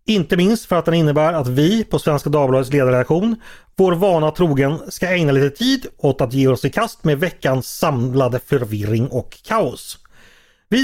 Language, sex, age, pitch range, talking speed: Swedish, male, 30-49, 135-190 Hz, 175 wpm